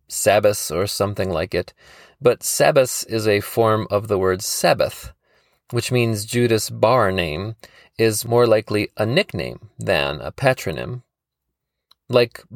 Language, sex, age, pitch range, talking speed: English, male, 30-49, 105-130 Hz, 135 wpm